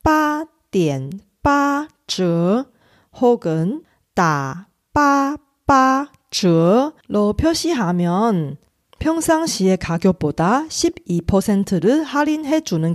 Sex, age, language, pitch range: female, 40-59, Korean, 175-290 Hz